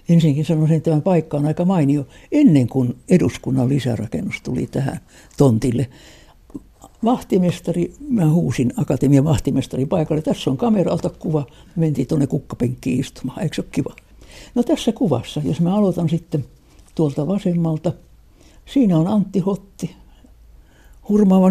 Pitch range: 140-190 Hz